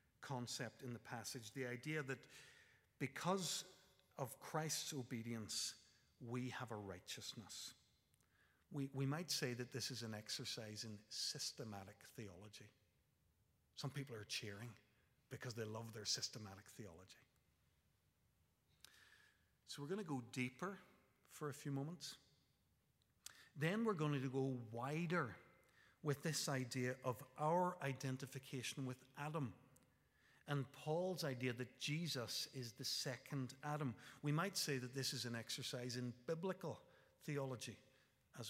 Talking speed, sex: 130 wpm, male